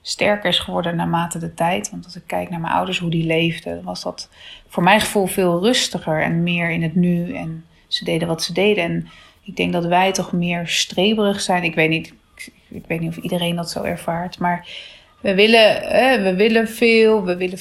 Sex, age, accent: female, 30-49, Dutch